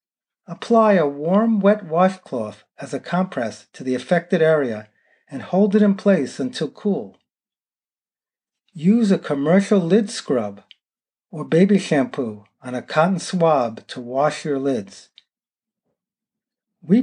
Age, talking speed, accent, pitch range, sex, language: 40-59, 125 wpm, American, 145-210 Hz, male, English